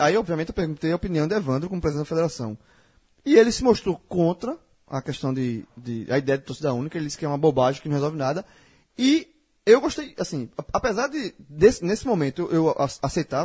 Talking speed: 210 wpm